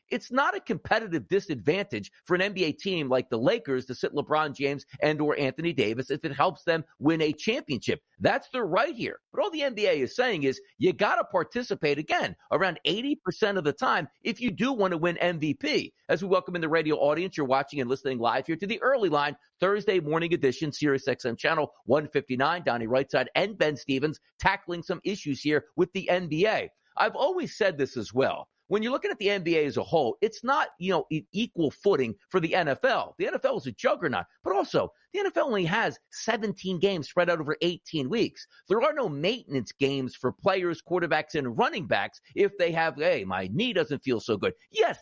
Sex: male